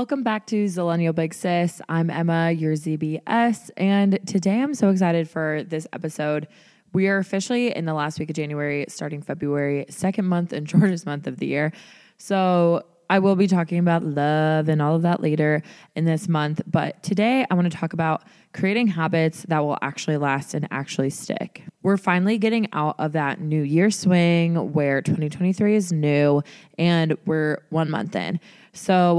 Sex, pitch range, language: female, 155-195 Hz, English